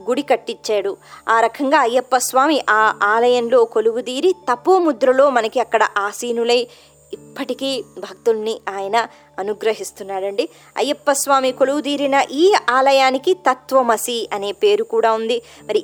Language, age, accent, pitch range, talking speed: Telugu, 20-39, native, 230-320 Hz, 110 wpm